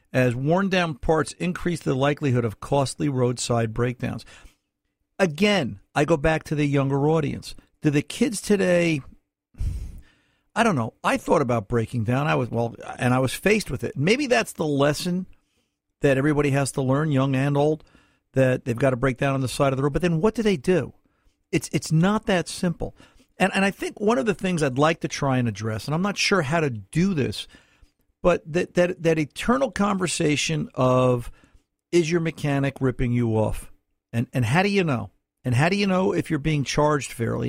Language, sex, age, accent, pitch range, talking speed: English, male, 50-69, American, 125-170 Hz, 200 wpm